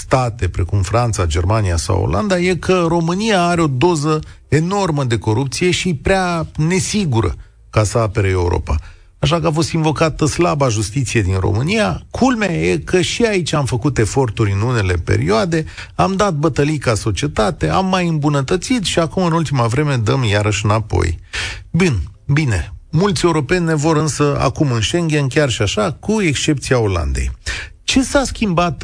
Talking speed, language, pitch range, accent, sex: 160 wpm, Romanian, 105-165 Hz, native, male